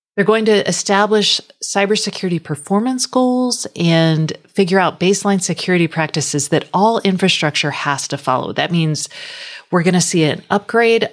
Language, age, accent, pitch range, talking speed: English, 40-59, American, 145-205 Hz, 145 wpm